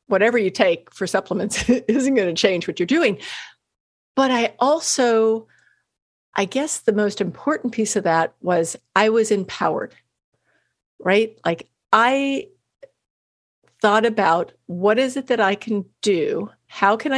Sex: female